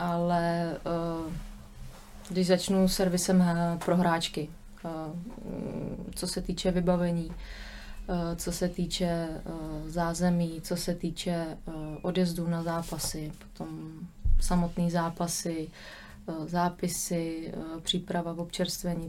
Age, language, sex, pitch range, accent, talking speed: 20-39, Czech, female, 165-180 Hz, native, 85 wpm